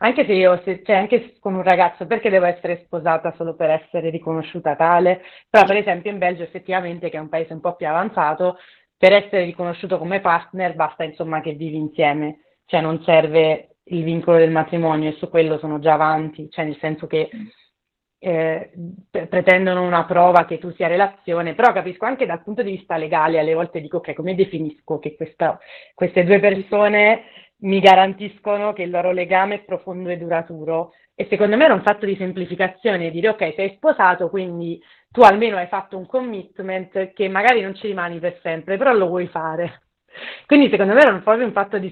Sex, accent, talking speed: female, native, 190 wpm